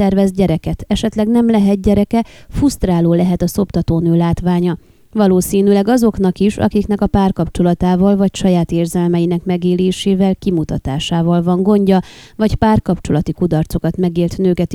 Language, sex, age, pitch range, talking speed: Hungarian, female, 30-49, 175-215 Hz, 120 wpm